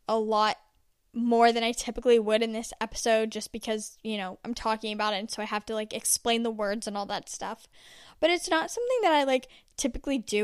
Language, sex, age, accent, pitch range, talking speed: English, female, 10-29, American, 220-250 Hz, 230 wpm